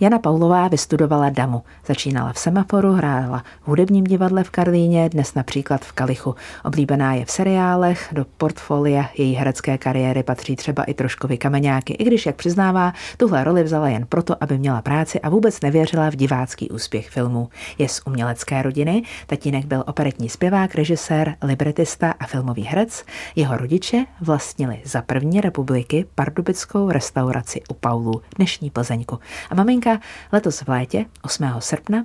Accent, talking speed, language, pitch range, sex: native, 155 wpm, Czech, 130-180 Hz, female